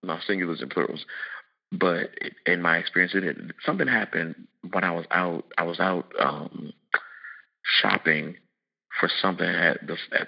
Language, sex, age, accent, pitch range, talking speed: English, male, 30-49, American, 85-95 Hz, 150 wpm